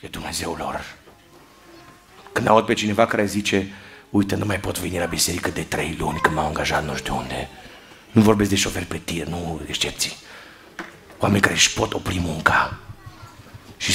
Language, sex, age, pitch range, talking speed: Romanian, male, 50-69, 75-105 Hz, 170 wpm